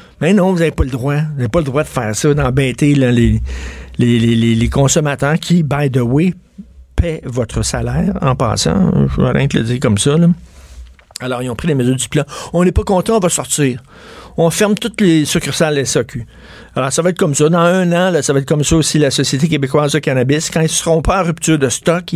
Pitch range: 120-160 Hz